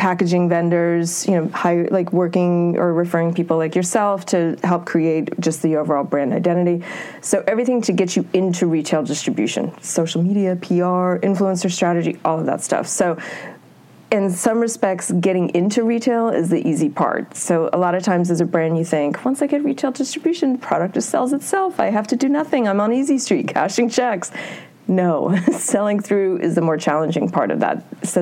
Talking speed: 190 wpm